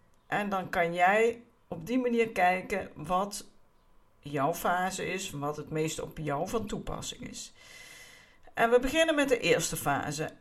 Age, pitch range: 50-69, 160-230 Hz